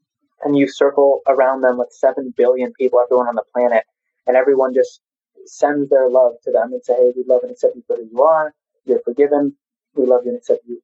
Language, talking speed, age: English, 225 wpm, 20-39